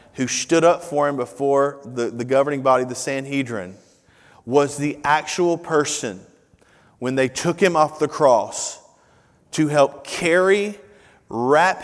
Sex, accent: male, American